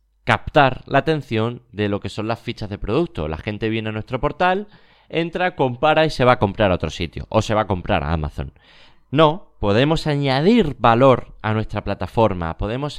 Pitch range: 105-145 Hz